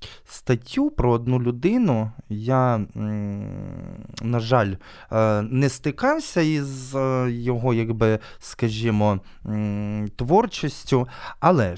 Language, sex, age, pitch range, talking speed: Ukrainian, male, 20-39, 110-140 Hz, 75 wpm